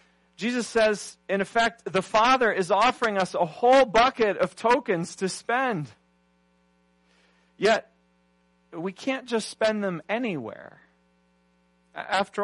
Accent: American